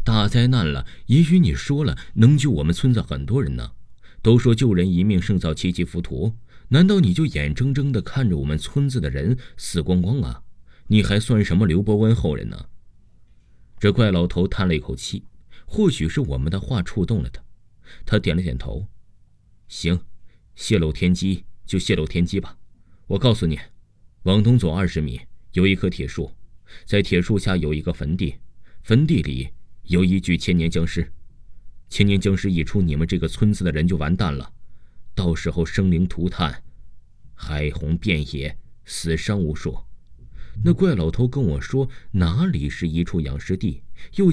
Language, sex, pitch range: Chinese, male, 85-110 Hz